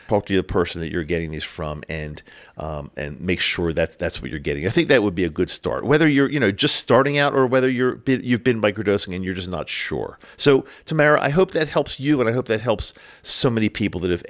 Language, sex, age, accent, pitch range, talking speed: English, male, 50-69, American, 95-125 Hz, 265 wpm